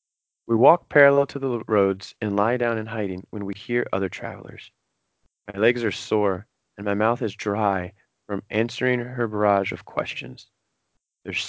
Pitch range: 100-125 Hz